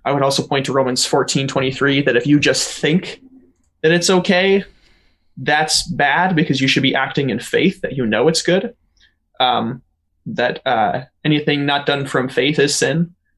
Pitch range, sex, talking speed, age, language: 135-175 Hz, male, 185 wpm, 20-39, English